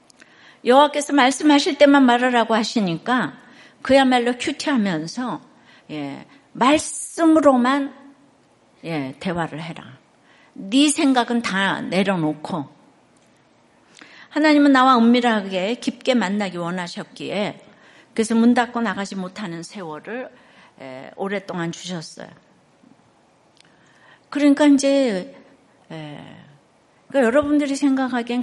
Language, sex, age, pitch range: Korean, female, 60-79, 180-270 Hz